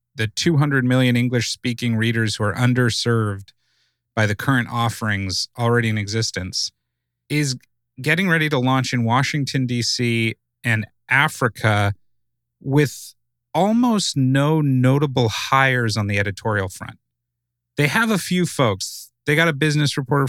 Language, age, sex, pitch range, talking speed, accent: English, 30-49, male, 115-140 Hz, 130 wpm, American